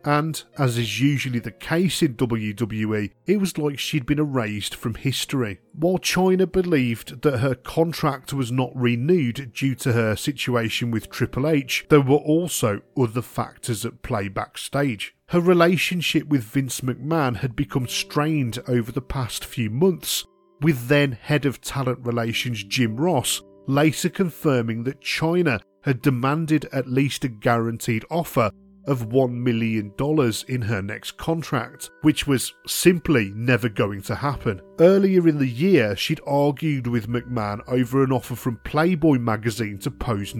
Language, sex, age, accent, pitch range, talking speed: English, male, 40-59, British, 120-150 Hz, 150 wpm